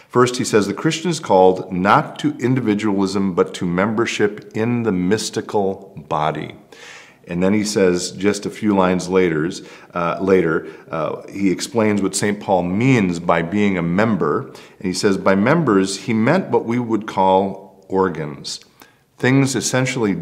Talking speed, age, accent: 155 wpm, 50-69, American